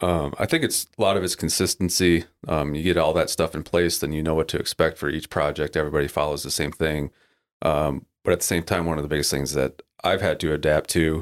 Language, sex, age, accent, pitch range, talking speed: English, male, 30-49, American, 70-85 Hz, 255 wpm